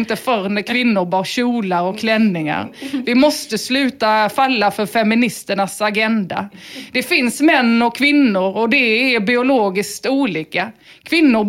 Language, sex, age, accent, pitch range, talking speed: English, female, 30-49, Swedish, 225-285 Hz, 130 wpm